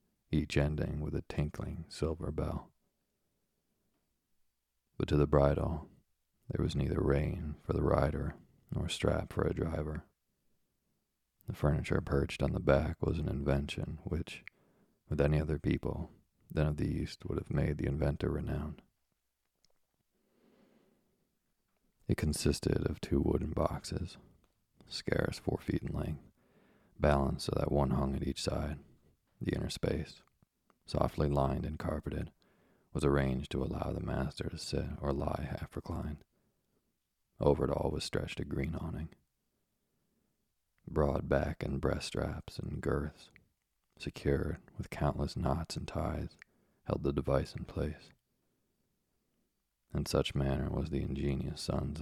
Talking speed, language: 135 wpm, English